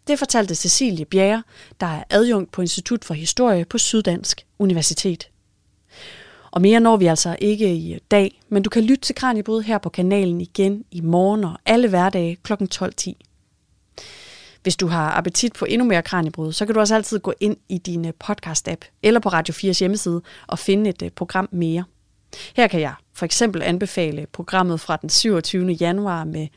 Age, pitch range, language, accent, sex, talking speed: 30-49, 175-215 Hz, Danish, native, female, 180 wpm